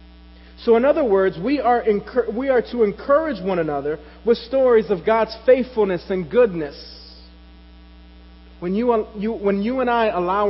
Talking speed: 165 wpm